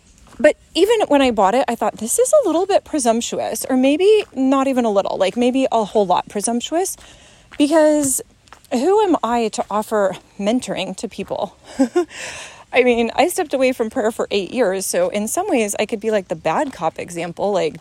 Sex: female